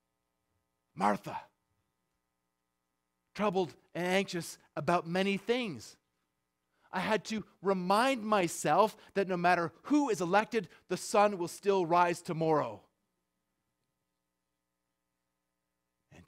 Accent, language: American, English